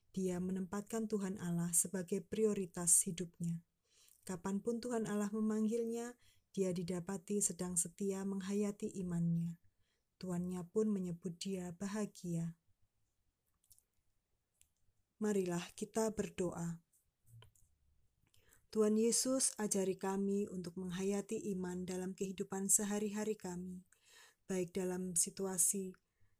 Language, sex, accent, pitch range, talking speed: Indonesian, female, native, 170-205 Hz, 90 wpm